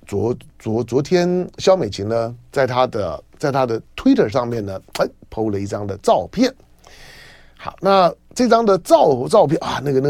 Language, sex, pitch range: Chinese, male, 105-135 Hz